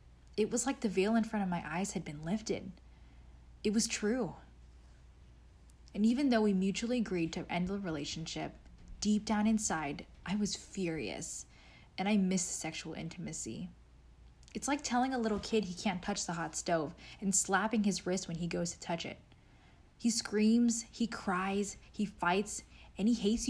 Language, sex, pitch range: English, female, 160-210 Hz